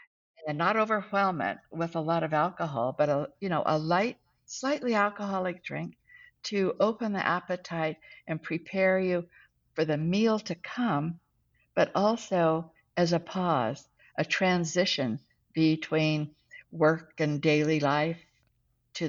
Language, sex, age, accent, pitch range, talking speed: English, female, 60-79, American, 150-185 Hz, 130 wpm